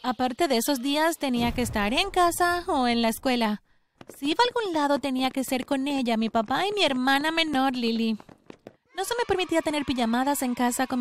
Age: 30-49